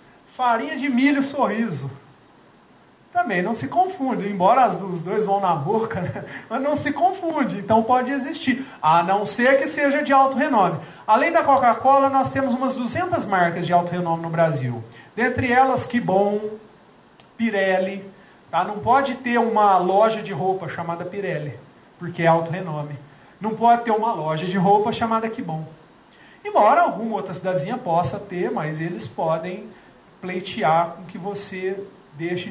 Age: 40-59